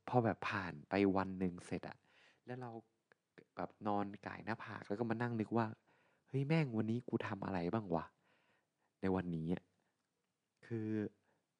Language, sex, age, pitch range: Thai, male, 20-39, 90-115 Hz